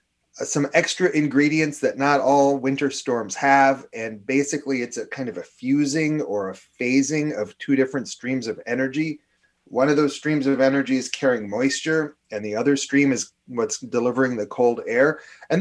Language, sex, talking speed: English, male, 175 wpm